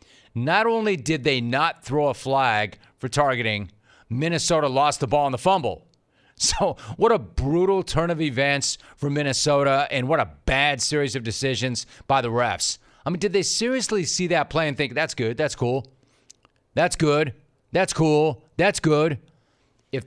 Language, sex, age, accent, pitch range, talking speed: English, male, 40-59, American, 130-160 Hz, 170 wpm